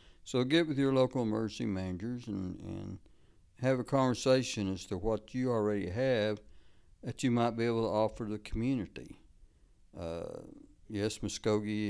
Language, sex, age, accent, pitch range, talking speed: English, male, 60-79, American, 95-110 Hz, 150 wpm